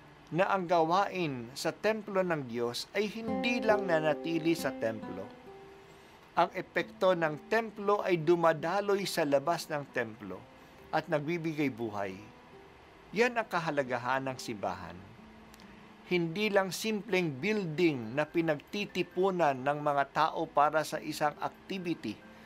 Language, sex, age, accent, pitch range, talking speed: Filipino, male, 50-69, native, 135-180 Hz, 120 wpm